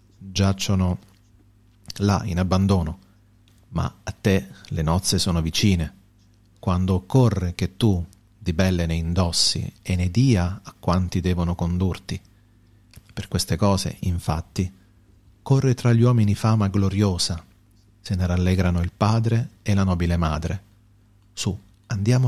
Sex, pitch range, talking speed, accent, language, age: male, 90-105 Hz, 125 wpm, native, Italian, 40-59